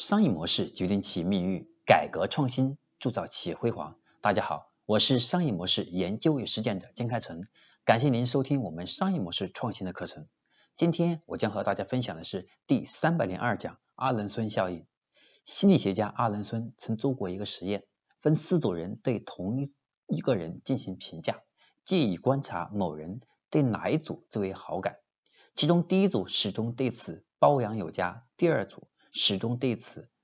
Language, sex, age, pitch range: Chinese, male, 50-69, 100-145 Hz